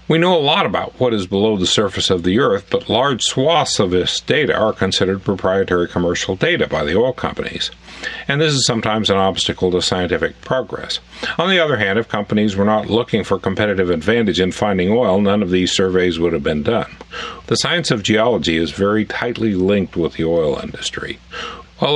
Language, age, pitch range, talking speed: English, 50-69, 90-120 Hz, 200 wpm